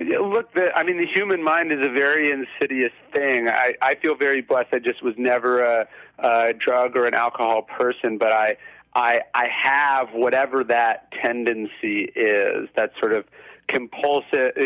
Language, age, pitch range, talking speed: English, 40-59, 120-165 Hz, 165 wpm